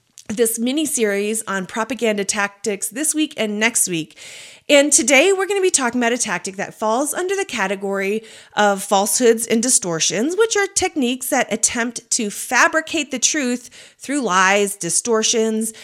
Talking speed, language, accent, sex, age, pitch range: 155 wpm, English, American, female, 30-49, 205-275 Hz